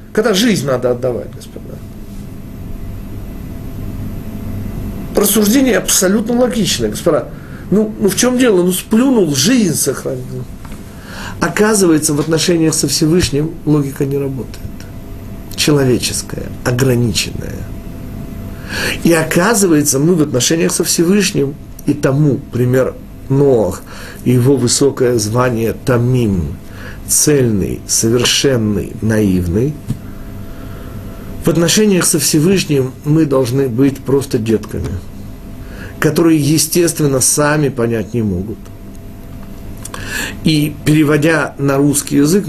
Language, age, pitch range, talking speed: Russian, 50-69, 105-155 Hz, 95 wpm